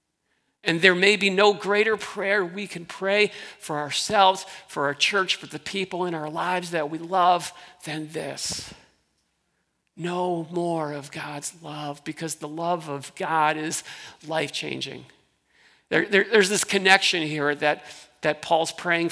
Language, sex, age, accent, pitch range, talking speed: English, male, 50-69, American, 150-190 Hz, 150 wpm